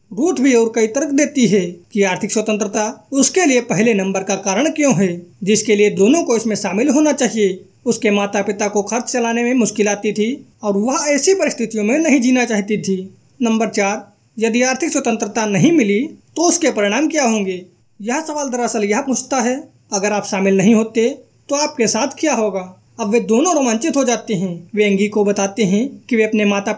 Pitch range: 205-265 Hz